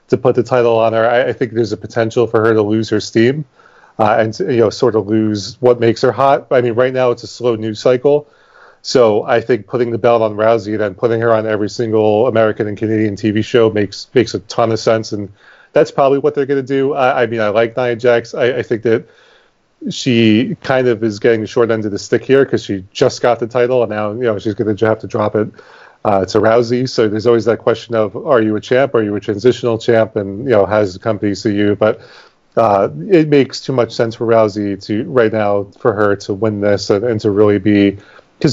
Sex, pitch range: male, 105-120 Hz